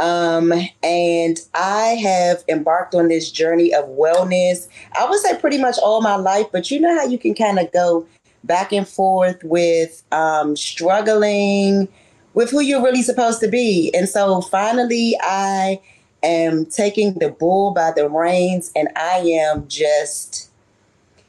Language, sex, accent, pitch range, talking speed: English, female, American, 160-200 Hz, 155 wpm